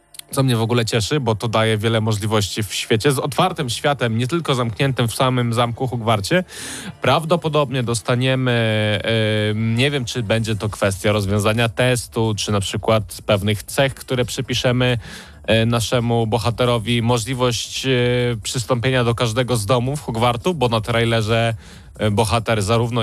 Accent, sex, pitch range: native, male, 110-125 Hz